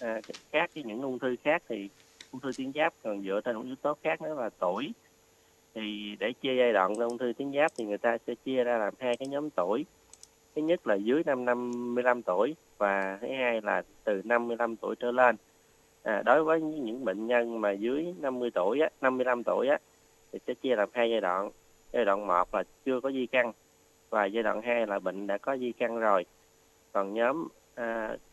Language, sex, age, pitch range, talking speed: Vietnamese, male, 20-39, 105-130 Hz, 210 wpm